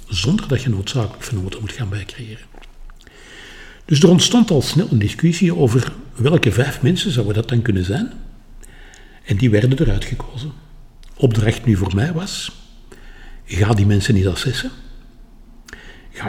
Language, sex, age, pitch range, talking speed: Dutch, male, 60-79, 100-140 Hz, 145 wpm